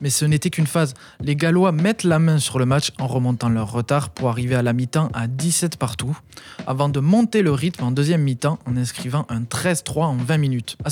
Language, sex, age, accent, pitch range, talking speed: French, male, 20-39, French, 125-165 Hz, 225 wpm